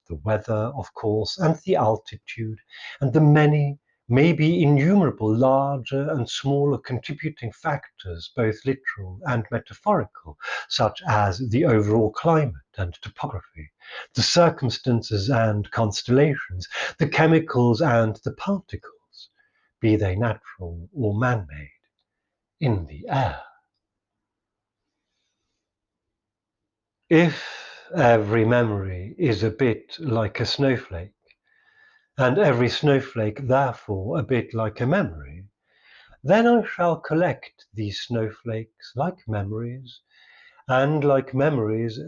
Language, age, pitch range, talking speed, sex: English, 50-69, 110-155 Hz, 105 wpm, male